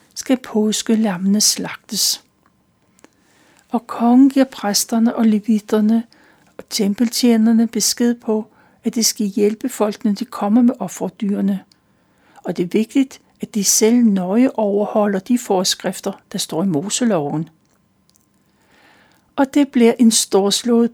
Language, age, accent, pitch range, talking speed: Danish, 60-79, native, 200-240 Hz, 125 wpm